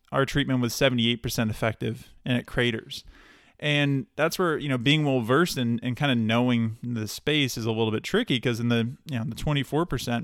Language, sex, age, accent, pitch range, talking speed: English, male, 20-39, American, 115-135 Hz, 210 wpm